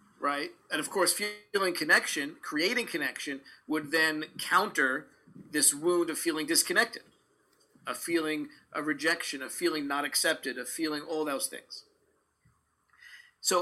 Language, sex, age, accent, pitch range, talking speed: English, male, 40-59, American, 155-210 Hz, 130 wpm